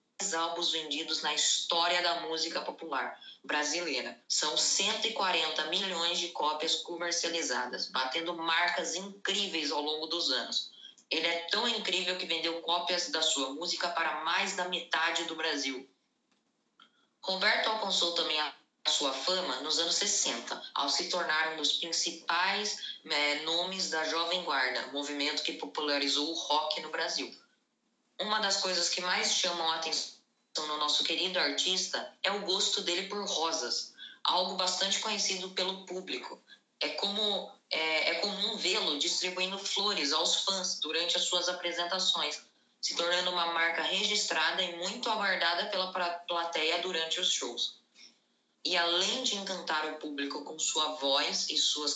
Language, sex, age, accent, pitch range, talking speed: Portuguese, female, 10-29, Brazilian, 155-185 Hz, 145 wpm